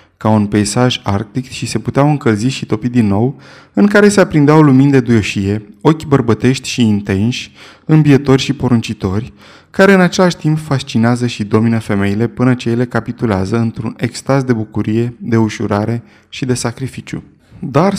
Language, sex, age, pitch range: Romanian, male, 20-39, 110-150 Hz